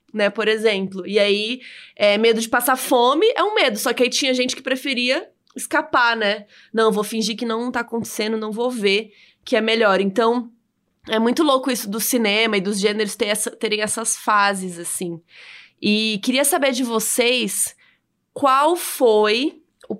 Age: 20-39